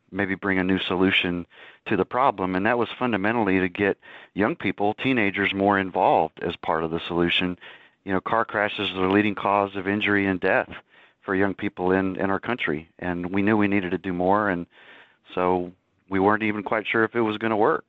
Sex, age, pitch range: male, 40-59, 90-105 Hz